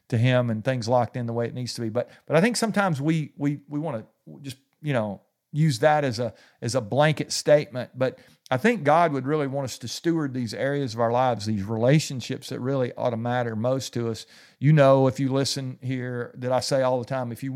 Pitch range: 120-145 Hz